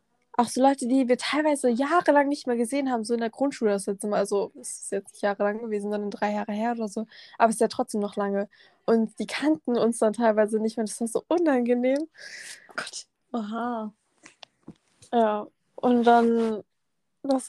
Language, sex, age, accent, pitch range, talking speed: German, female, 20-39, German, 215-250 Hz, 185 wpm